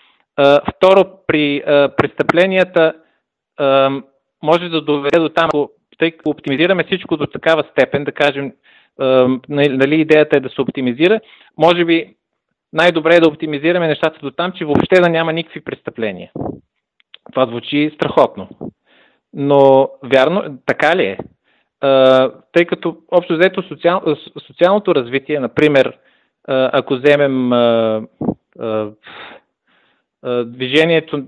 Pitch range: 135-165 Hz